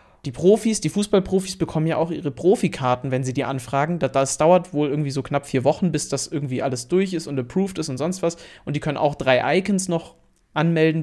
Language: German